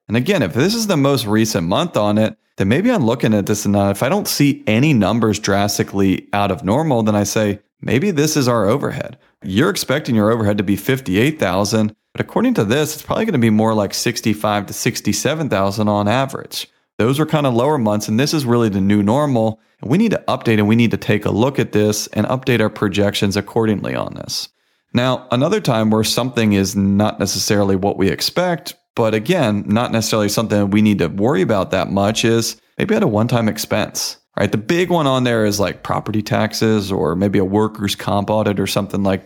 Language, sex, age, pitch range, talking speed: English, male, 40-59, 100-120 Hz, 215 wpm